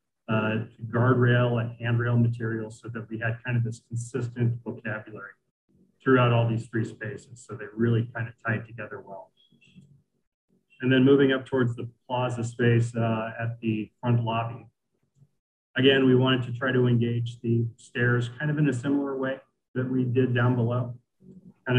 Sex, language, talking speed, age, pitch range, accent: male, English, 170 wpm, 40-59, 115-125 Hz, American